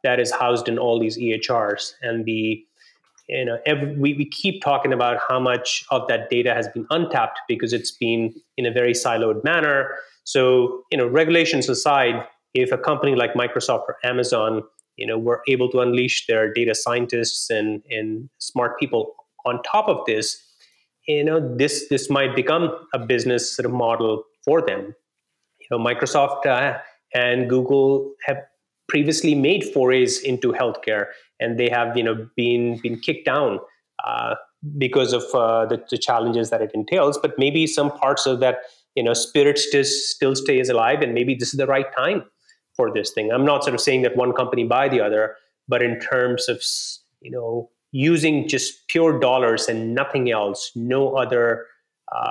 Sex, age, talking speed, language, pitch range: male, 30-49, 180 wpm, English, 115-140 Hz